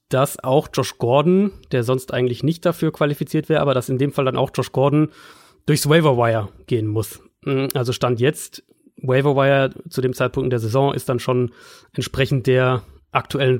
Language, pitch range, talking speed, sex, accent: German, 125-145 Hz, 185 wpm, male, German